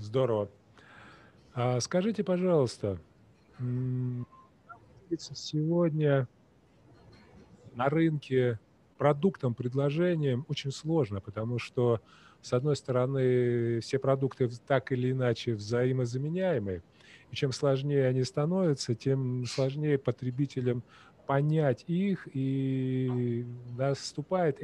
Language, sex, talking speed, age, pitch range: Russian, male, 80 wpm, 30-49, 125-155 Hz